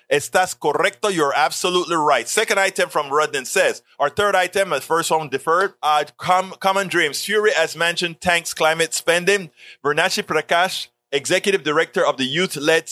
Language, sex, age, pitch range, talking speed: English, male, 30-49, 140-180 Hz, 160 wpm